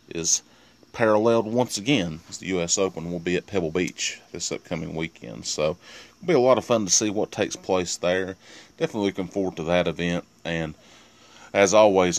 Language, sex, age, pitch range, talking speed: English, male, 30-49, 80-95 Hz, 185 wpm